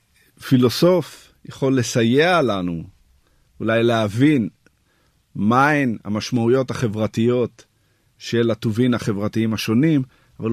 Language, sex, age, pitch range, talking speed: Hebrew, male, 50-69, 100-130 Hz, 80 wpm